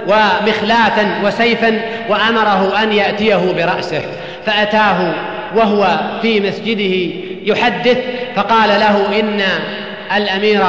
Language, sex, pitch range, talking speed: Persian, male, 195-230 Hz, 85 wpm